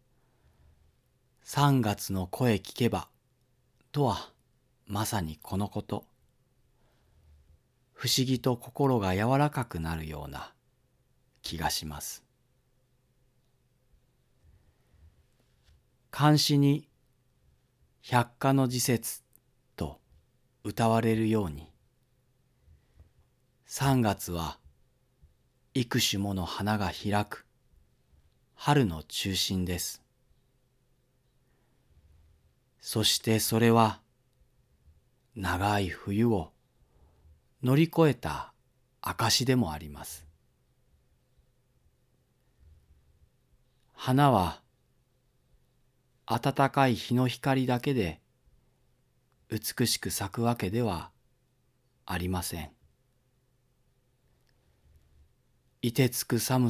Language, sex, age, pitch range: Japanese, male, 40-59, 95-130 Hz